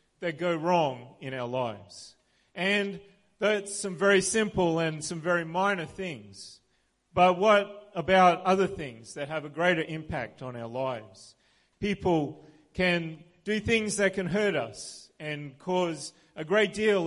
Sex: male